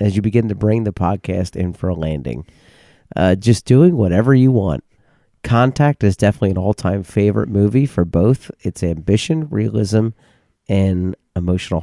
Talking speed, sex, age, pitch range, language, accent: 155 wpm, male, 30-49, 95-120 Hz, English, American